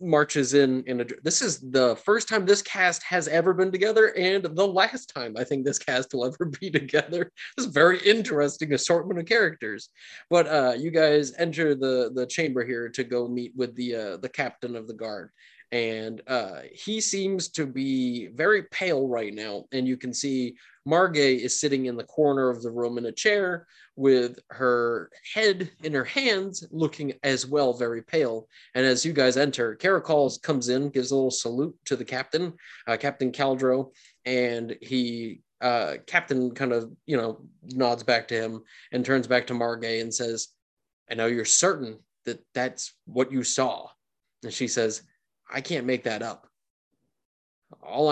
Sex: male